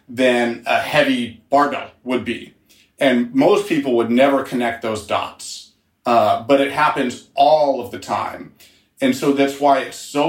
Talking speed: 165 wpm